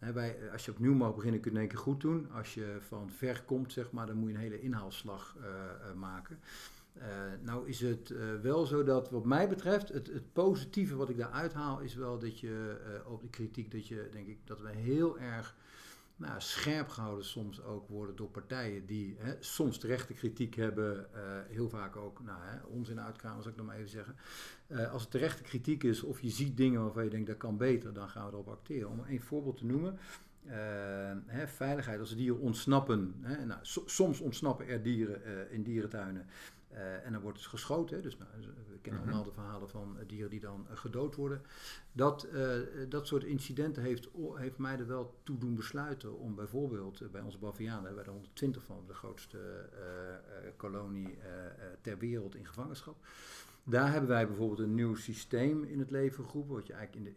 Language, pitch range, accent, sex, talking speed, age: Dutch, 105-130 Hz, Dutch, male, 210 wpm, 50-69